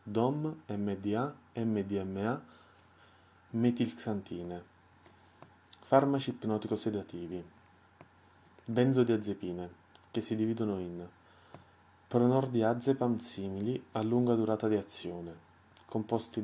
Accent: native